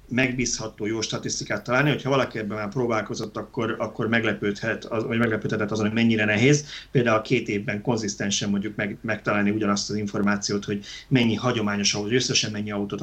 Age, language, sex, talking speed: 30-49, Hungarian, male, 165 wpm